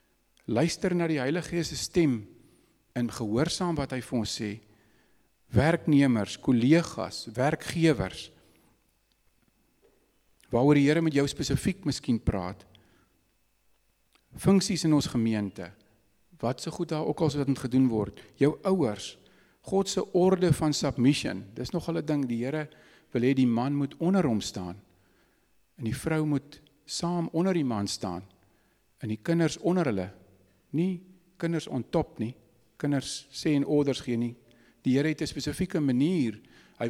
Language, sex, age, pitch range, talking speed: English, male, 50-69, 115-155 Hz, 145 wpm